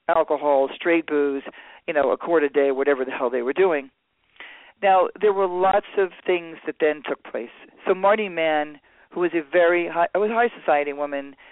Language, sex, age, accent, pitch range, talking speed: English, male, 40-59, American, 150-190 Hz, 190 wpm